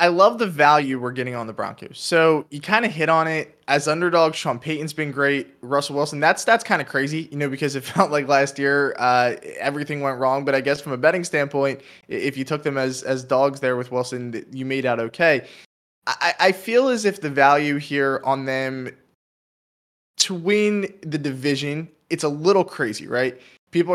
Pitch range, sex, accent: 135-160 Hz, male, American